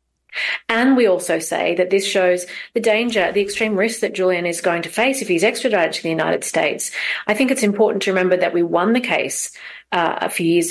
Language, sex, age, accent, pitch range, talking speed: English, female, 40-59, Australian, 170-210 Hz, 225 wpm